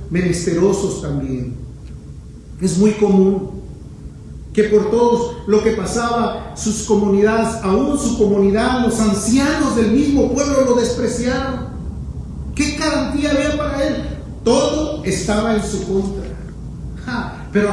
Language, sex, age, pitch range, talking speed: Spanish, male, 40-59, 195-245 Hz, 115 wpm